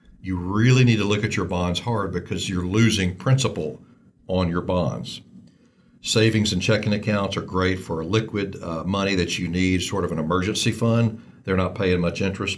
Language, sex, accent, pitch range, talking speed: English, male, American, 90-115 Hz, 190 wpm